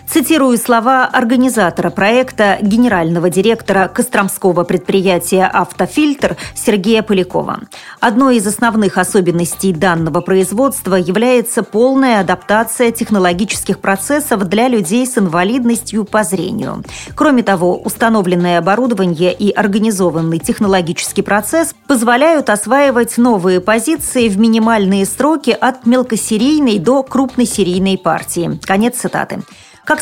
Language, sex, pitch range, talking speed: Russian, female, 190-245 Hz, 100 wpm